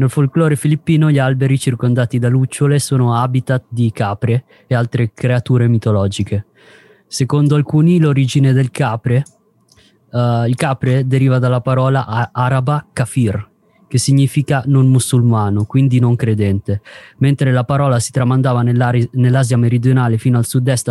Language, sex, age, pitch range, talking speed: Italian, male, 20-39, 120-140 Hz, 135 wpm